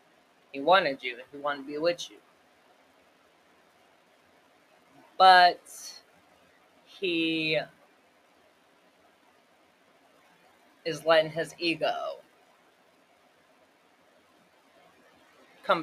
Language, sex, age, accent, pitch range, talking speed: English, female, 30-49, American, 160-230 Hz, 65 wpm